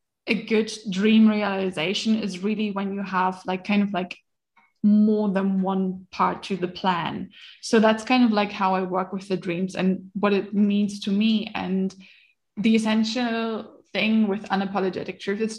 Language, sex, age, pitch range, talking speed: English, female, 20-39, 190-210 Hz, 175 wpm